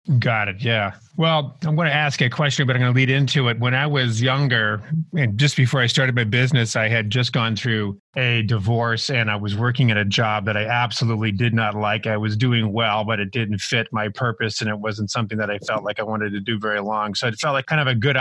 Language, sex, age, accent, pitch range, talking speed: English, male, 30-49, American, 115-135 Hz, 265 wpm